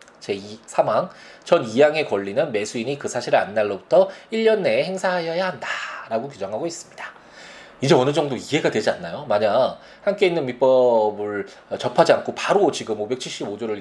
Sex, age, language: male, 20-39, Korean